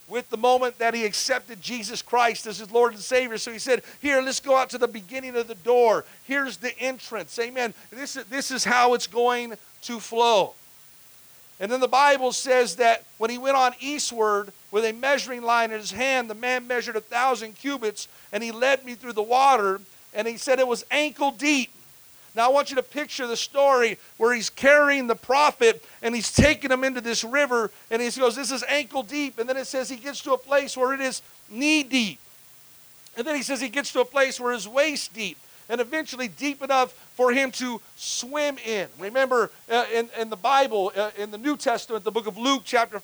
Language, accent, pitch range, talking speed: English, American, 230-265 Hz, 215 wpm